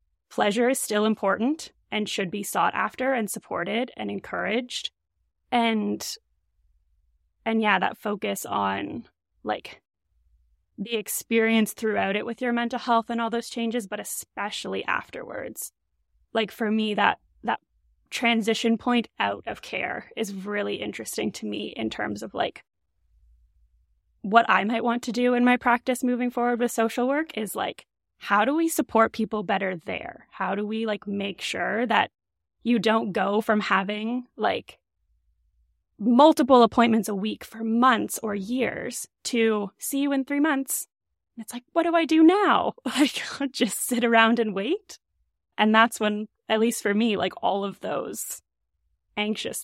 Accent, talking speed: American, 155 wpm